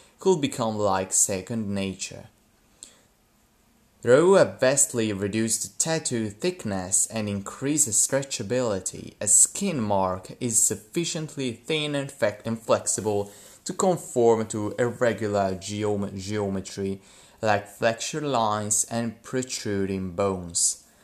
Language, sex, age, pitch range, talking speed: English, male, 20-39, 100-120 Hz, 95 wpm